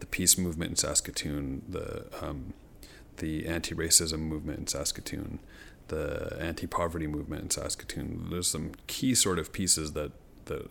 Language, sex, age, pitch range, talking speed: English, male, 30-49, 80-85 Hz, 140 wpm